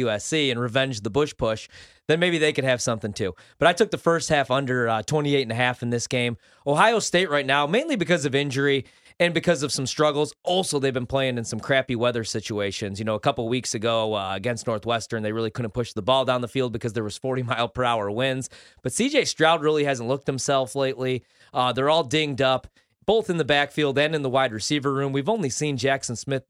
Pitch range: 115-145 Hz